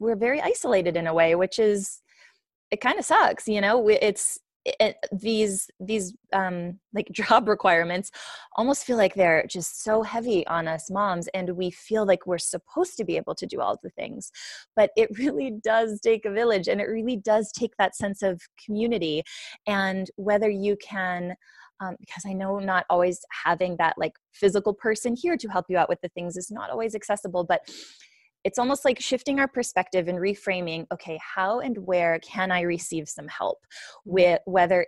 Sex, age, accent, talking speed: female, 20-39, American, 185 wpm